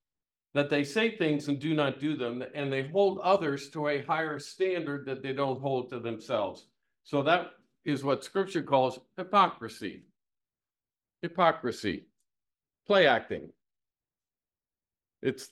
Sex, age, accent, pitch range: male, 50-69, American, 130-175 Hz